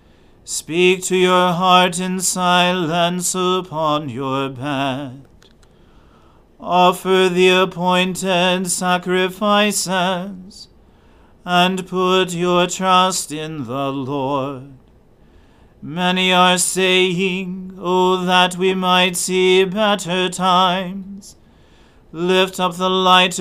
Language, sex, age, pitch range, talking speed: English, male, 40-59, 175-185 Hz, 85 wpm